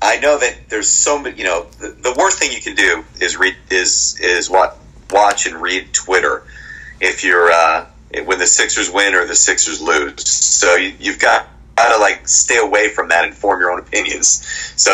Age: 30-49